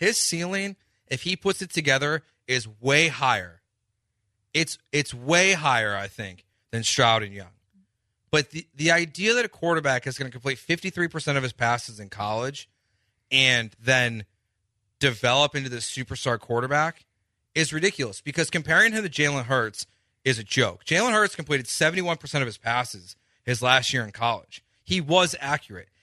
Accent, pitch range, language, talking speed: American, 110-160 Hz, English, 160 wpm